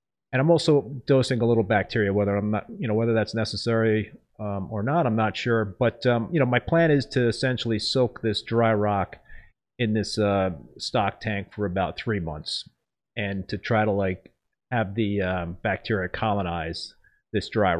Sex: male